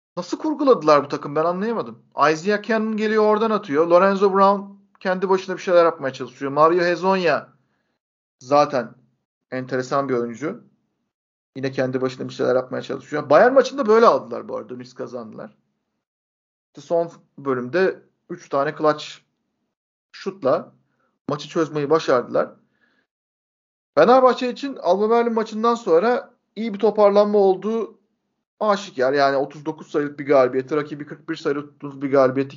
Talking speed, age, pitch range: 135 wpm, 50-69, 140-205 Hz